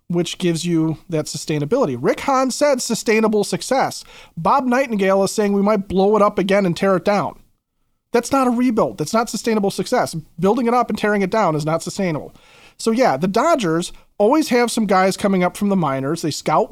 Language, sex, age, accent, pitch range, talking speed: English, male, 30-49, American, 170-215 Hz, 205 wpm